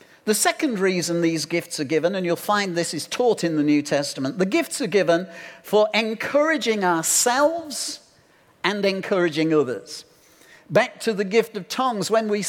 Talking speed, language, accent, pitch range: 170 wpm, English, British, 175-235 Hz